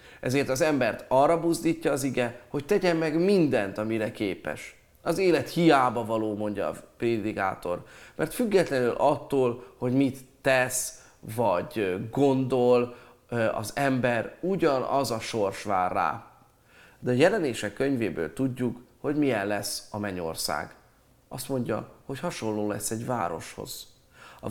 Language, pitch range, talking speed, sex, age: Hungarian, 110-140 Hz, 130 wpm, male, 30-49